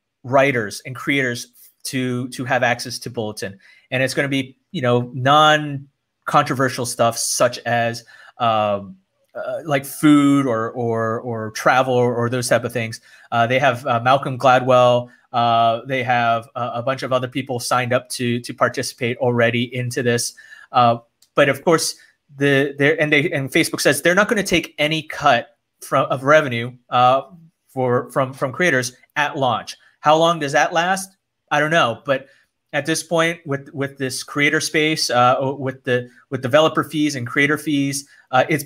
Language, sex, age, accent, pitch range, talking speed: English, male, 30-49, American, 120-145 Hz, 175 wpm